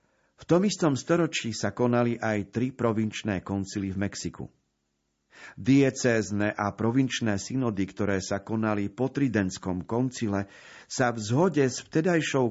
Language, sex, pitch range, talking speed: Slovak, male, 100-130 Hz, 130 wpm